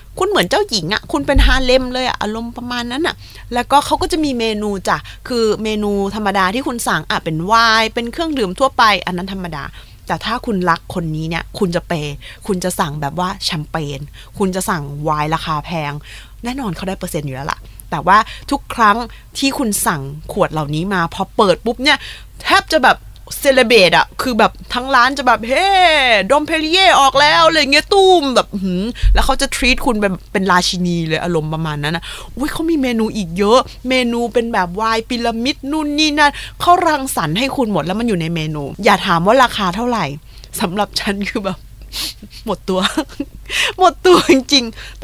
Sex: female